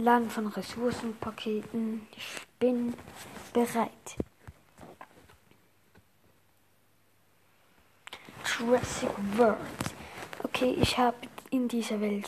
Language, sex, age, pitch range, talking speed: German, female, 20-39, 205-240 Hz, 70 wpm